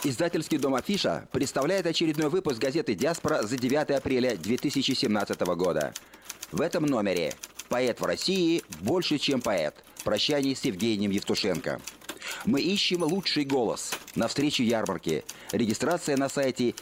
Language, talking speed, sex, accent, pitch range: Russian, 130 wpm, male, native, 125-165 Hz